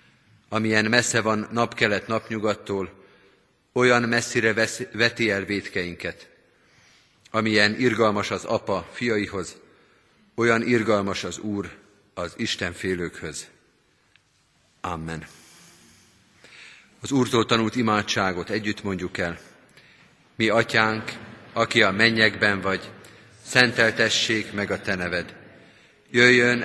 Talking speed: 90 wpm